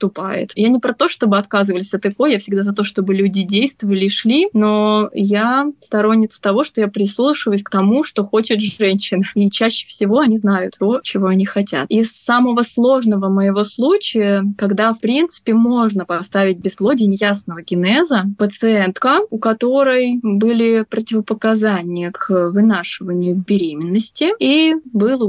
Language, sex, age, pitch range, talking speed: Russian, female, 20-39, 195-230 Hz, 145 wpm